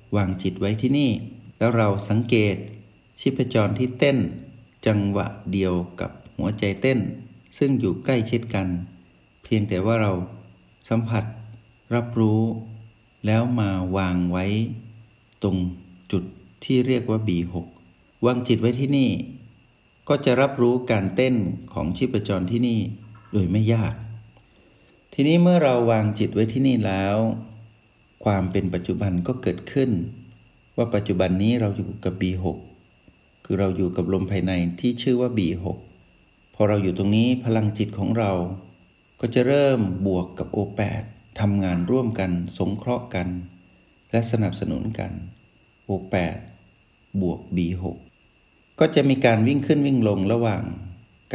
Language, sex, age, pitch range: Thai, male, 60-79, 95-120 Hz